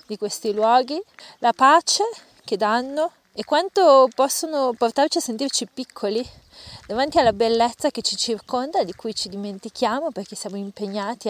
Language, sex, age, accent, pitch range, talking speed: Italian, female, 30-49, native, 195-235 Hz, 145 wpm